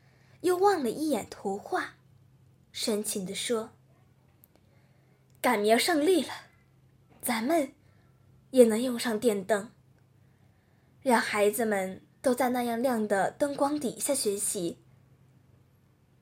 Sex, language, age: female, Chinese, 10-29